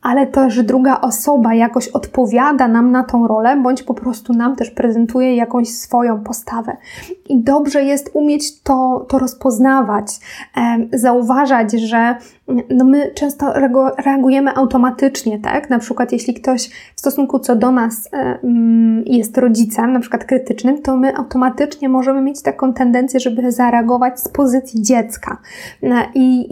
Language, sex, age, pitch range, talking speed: Polish, female, 20-39, 240-265 Hz, 150 wpm